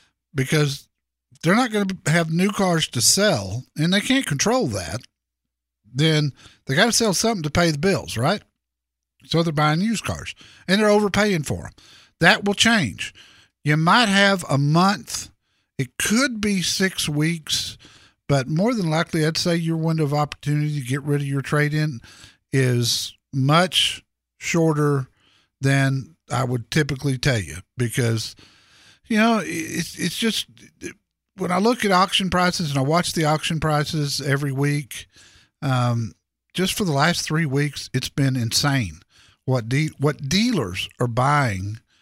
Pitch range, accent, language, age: 130-175 Hz, American, English, 50-69